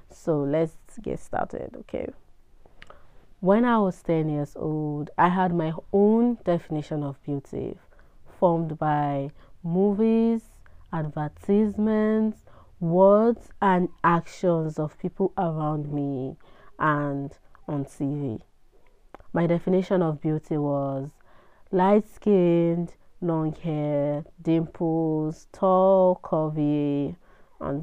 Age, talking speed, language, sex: 30-49, 95 wpm, English, female